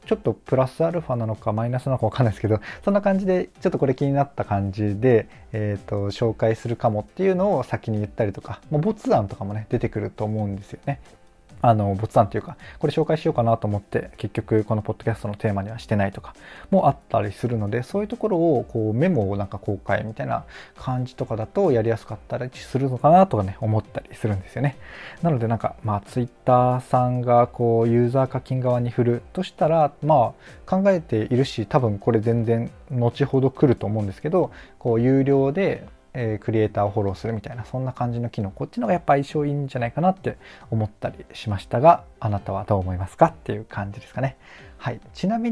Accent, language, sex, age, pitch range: native, Japanese, male, 20-39, 110-150 Hz